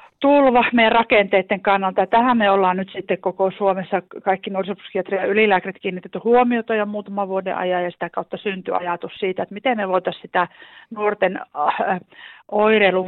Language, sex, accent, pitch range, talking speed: Finnish, female, native, 180-210 Hz, 150 wpm